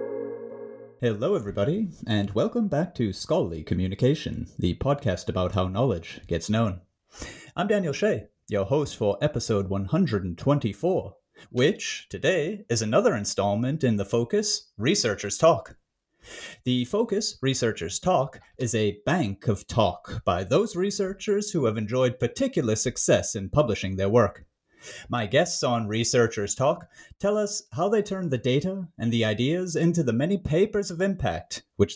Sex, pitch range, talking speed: male, 110-180 Hz, 145 wpm